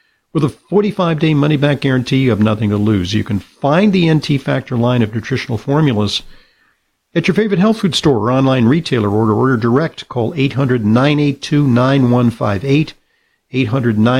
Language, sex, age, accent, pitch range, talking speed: English, male, 50-69, American, 115-145 Hz, 150 wpm